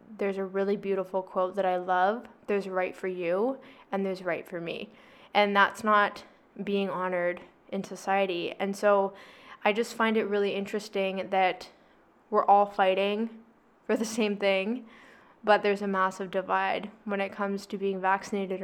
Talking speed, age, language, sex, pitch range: 165 wpm, 10-29, English, female, 190-215 Hz